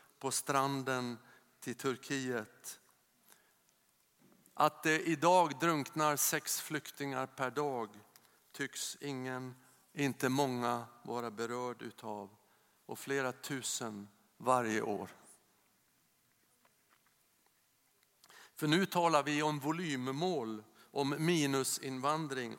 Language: Swedish